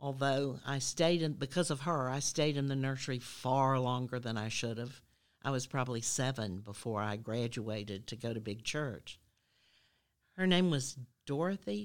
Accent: American